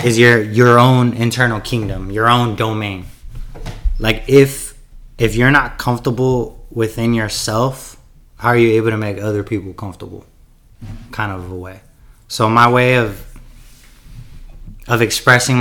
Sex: male